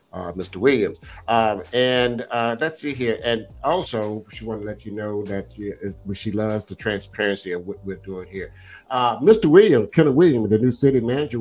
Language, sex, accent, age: English, male, American, 50-69